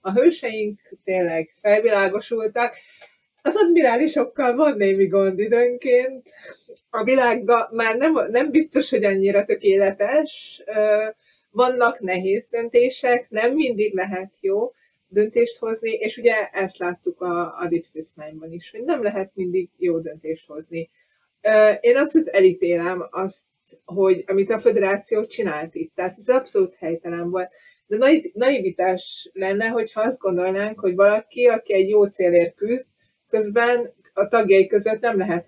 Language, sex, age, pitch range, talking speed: Hungarian, female, 30-49, 185-240 Hz, 130 wpm